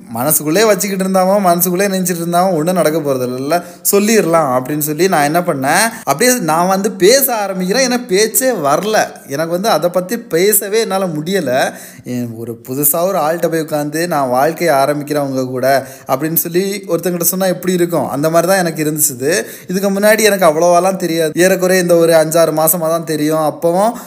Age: 20-39